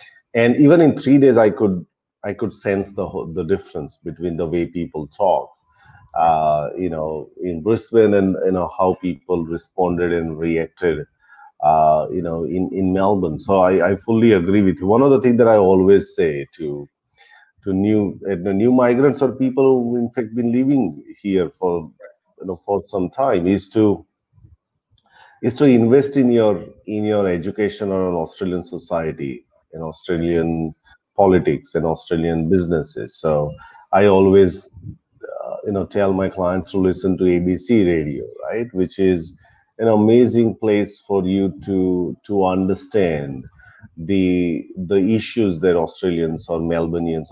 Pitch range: 85-105 Hz